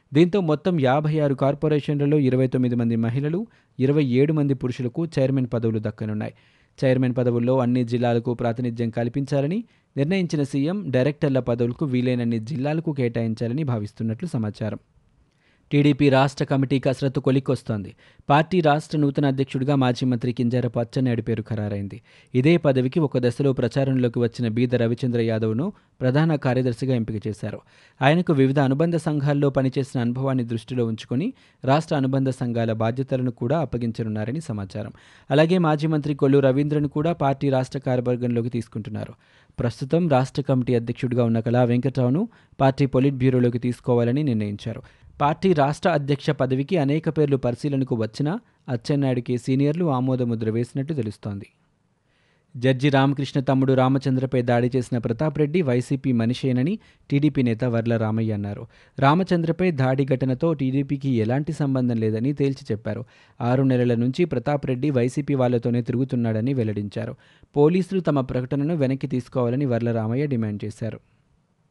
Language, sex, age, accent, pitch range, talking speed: Telugu, male, 20-39, native, 120-145 Hz, 125 wpm